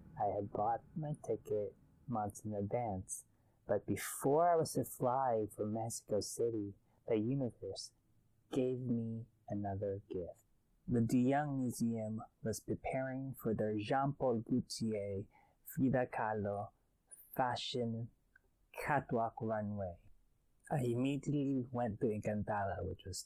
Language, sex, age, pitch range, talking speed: English, male, 20-39, 100-125 Hz, 115 wpm